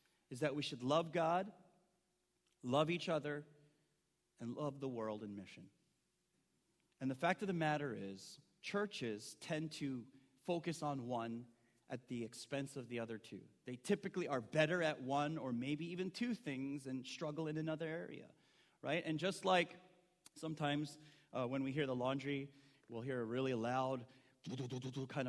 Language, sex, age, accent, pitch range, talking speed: English, male, 30-49, American, 130-175 Hz, 160 wpm